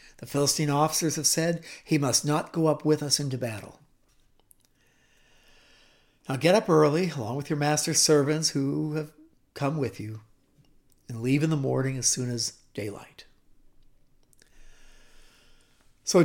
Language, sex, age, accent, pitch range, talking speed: English, male, 50-69, American, 135-200 Hz, 140 wpm